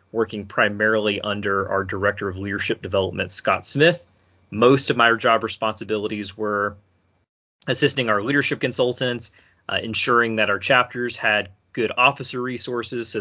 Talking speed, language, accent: 135 wpm, English, American